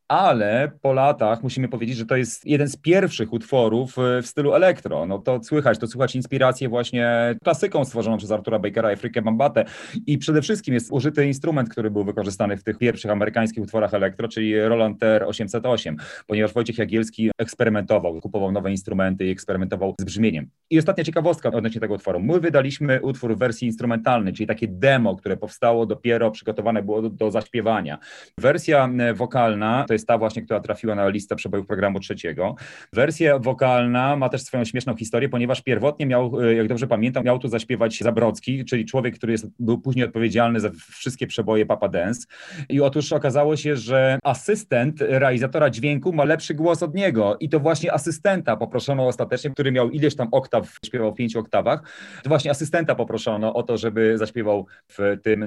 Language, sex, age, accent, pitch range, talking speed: Polish, male, 30-49, native, 110-135 Hz, 175 wpm